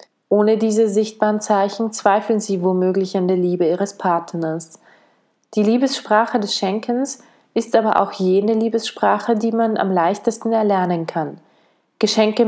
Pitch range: 185-220 Hz